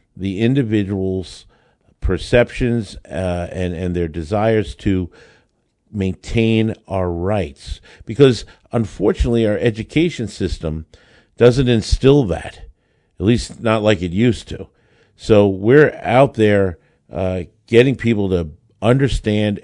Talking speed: 110 wpm